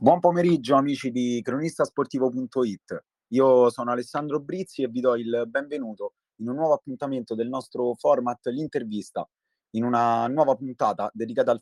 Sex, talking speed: male, 145 wpm